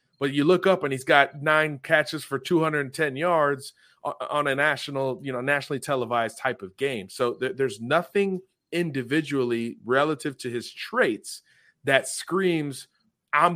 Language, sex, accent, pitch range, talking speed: English, male, American, 125-155 Hz, 150 wpm